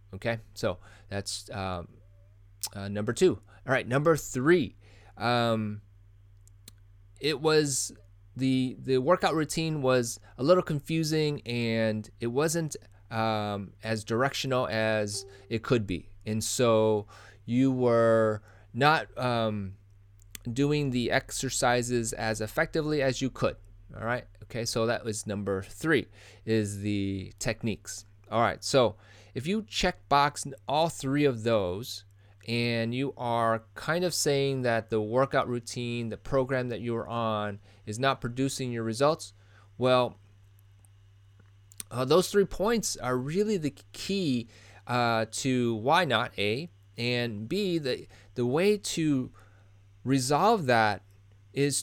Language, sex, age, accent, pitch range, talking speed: English, male, 20-39, American, 100-130 Hz, 130 wpm